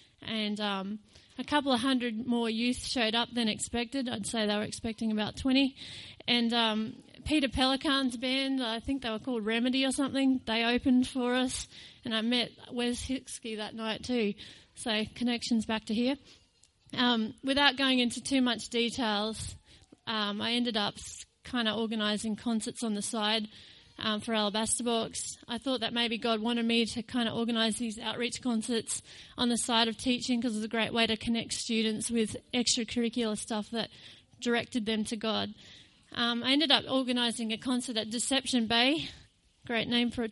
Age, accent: 30-49, Australian